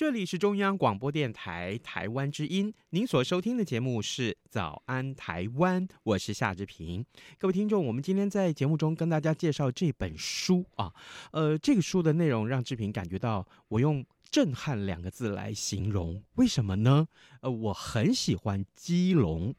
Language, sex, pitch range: Chinese, male, 100-170 Hz